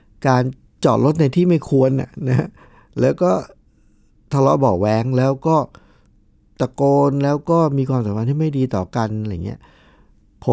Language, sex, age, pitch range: Thai, male, 60-79, 105-140 Hz